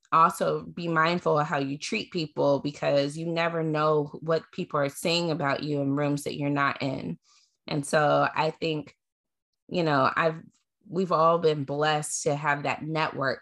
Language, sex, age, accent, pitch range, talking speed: English, female, 20-39, American, 140-165 Hz, 175 wpm